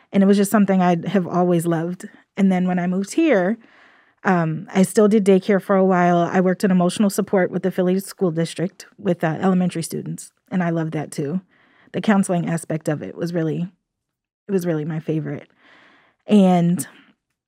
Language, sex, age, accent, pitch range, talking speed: English, female, 20-39, American, 170-200 Hz, 190 wpm